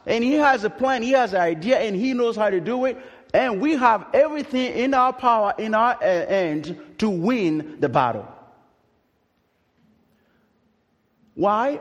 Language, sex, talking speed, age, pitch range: English, male, 160 wpm, 50-69, 160-265 Hz